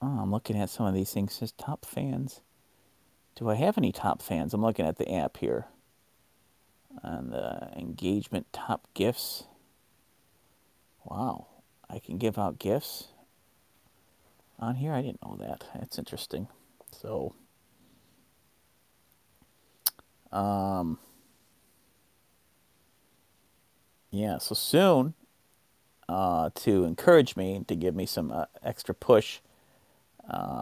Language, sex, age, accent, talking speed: English, male, 40-59, American, 120 wpm